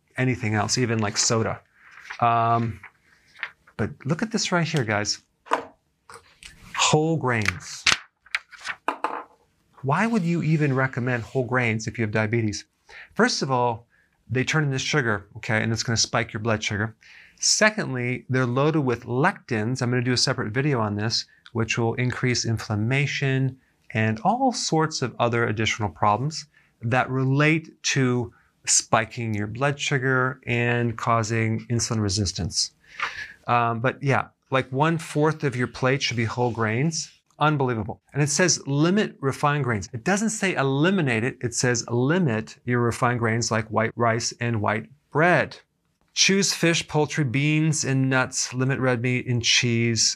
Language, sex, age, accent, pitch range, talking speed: English, male, 40-59, American, 115-145 Hz, 150 wpm